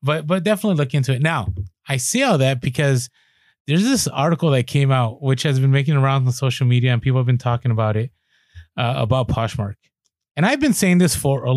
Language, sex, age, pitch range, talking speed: English, male, 30-49, 120-150 Hz, 225 wpm